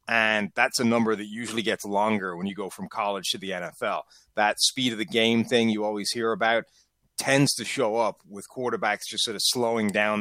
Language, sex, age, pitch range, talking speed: English, male, 30-49, 110-125 Hz, 215 wpm